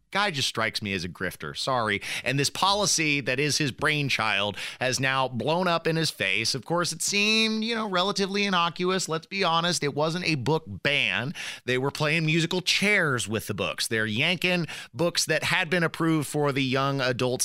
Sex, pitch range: male, 120-180 Hz